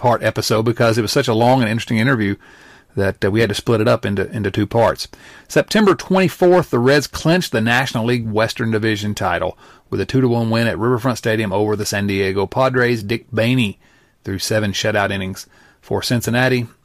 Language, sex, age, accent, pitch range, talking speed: English, male, 40-59, American, 110-135 Hz, 200 wpm